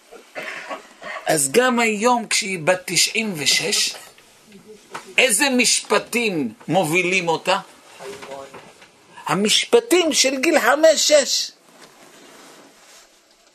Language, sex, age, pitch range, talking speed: Hebrew, male, 50-69, 185-255 Hz, 65 wpm